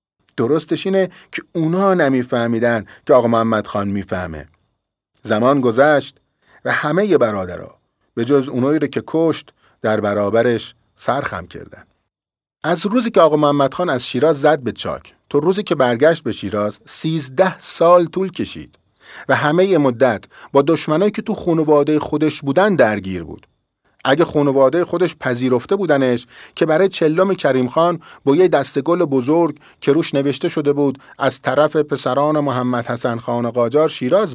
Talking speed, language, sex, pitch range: 150 wpm, Persian, male, 130-175 Hz